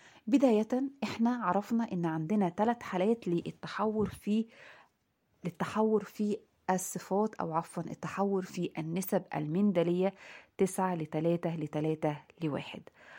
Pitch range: 160-210 Hz